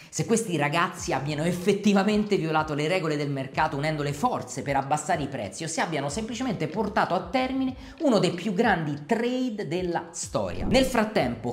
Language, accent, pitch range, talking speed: Italian, native, 140-195 Hz, 170 wpm